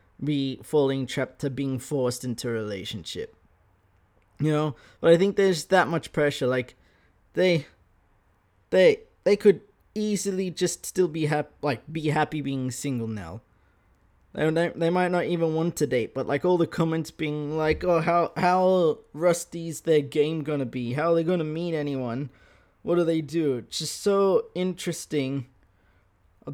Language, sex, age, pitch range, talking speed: English, male, 20-39, 110-165 Hz, 165 wpm